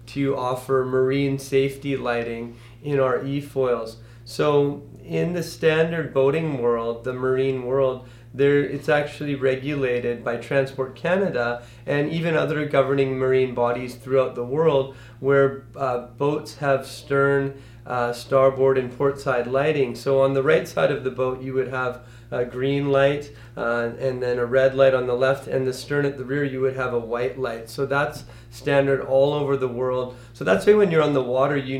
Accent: American